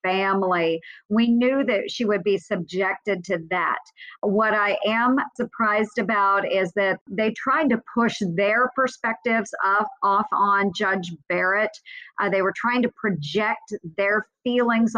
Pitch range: 190-230 Hz